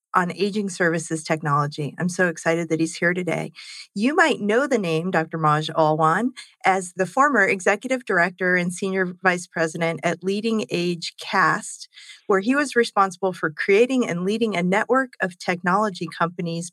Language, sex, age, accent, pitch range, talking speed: English, female, 40-59, American, 170-215 Hz, 160 wpm